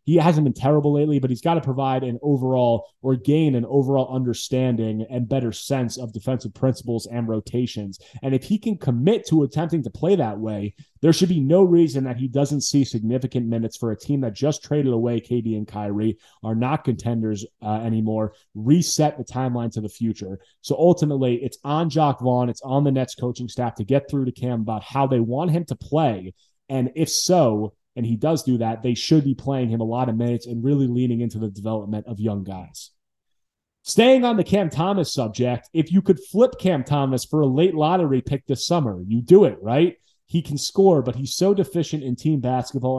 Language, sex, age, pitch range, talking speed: English, male, 20-39, 115-150 Hz, 210 wpm